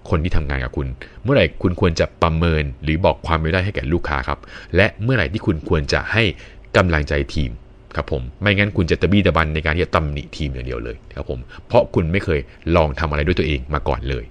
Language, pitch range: Thai, 75-95 Hz